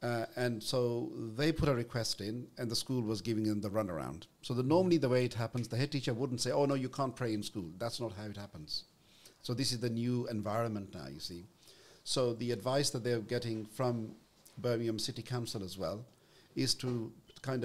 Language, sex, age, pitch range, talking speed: English, male, 60-79, 110-130 Hz, 215 wpm